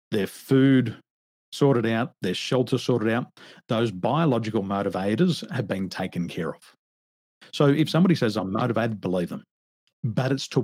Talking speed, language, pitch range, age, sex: 150 wpm, English, 115-155 Hz, 50-69, male